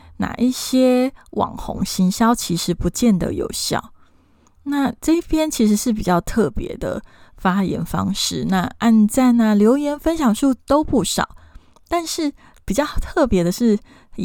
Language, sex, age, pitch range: Chinese, female, 20-39, 185-240 Hz